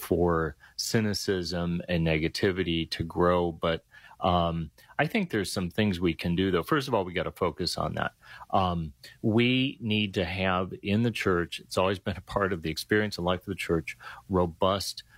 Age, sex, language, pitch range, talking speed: 30-49, male, English, 90-110 Hz, 190 wpm